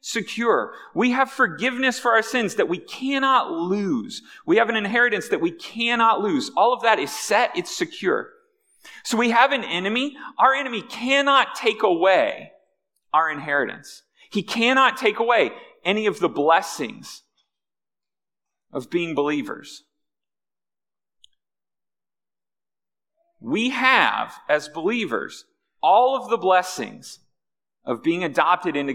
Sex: male